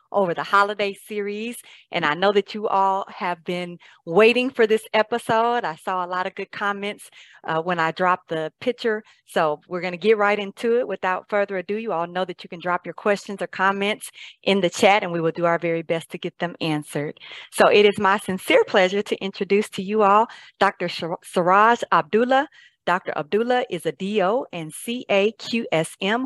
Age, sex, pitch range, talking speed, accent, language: 40-59, female, 175-215 Hz, 200 wpm, American, English